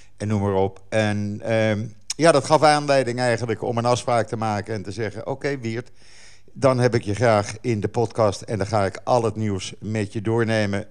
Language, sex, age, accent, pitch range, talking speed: Dutch, male, 50-69, Dutch, 100-130 Hz, 215 wpm